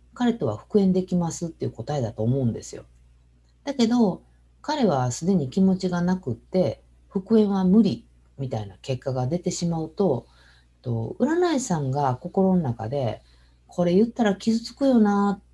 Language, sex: Japanese, female